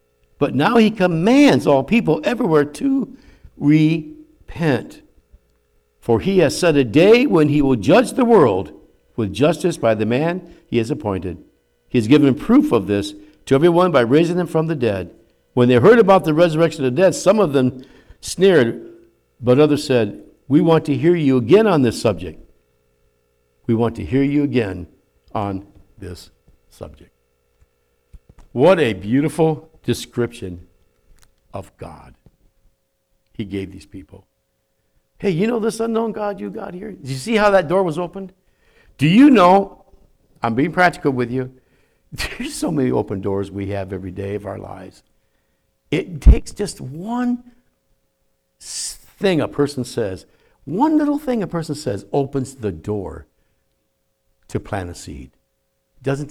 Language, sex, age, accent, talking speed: English, male, 60-79, American, 155 wpm